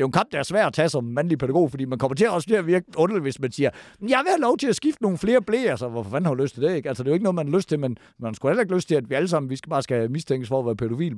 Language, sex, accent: Danish, male, native